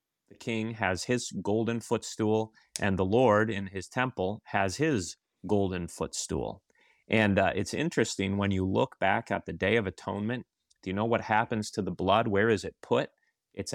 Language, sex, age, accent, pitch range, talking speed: English, male, 30-49, American, 95-110 Hz, 185 wpm